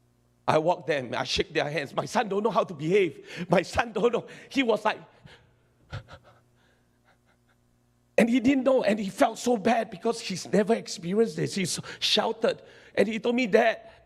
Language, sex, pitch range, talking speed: English, male, 185-250 Hz, 180 wpm